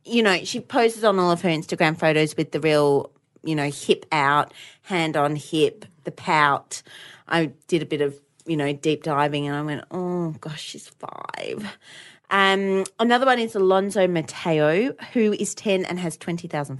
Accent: Australian